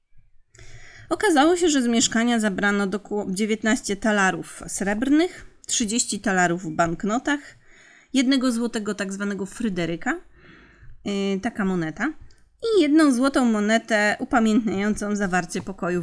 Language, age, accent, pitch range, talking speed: Polish, 30-49, native, 190-245 Hz, 100 wpm